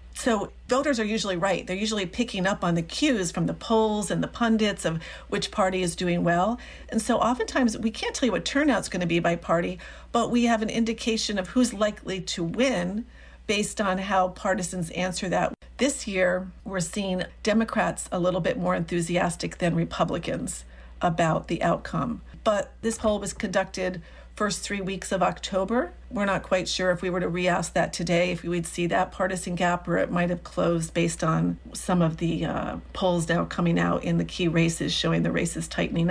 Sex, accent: female, American